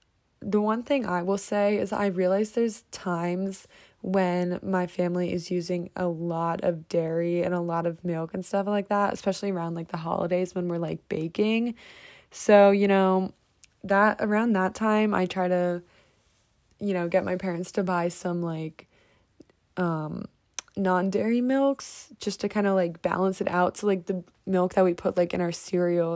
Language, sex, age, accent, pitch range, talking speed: English, female, 20-39, American, 175-210 Hz, 180 wpm